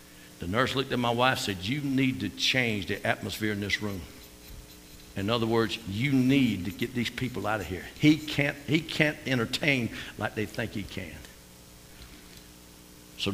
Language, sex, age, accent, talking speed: English, male, 60-79, American, 175 wpm